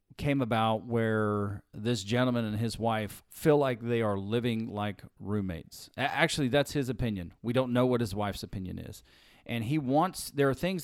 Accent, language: American, English